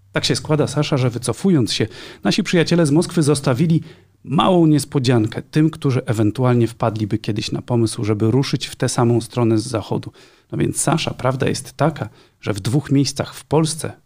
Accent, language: native, Polish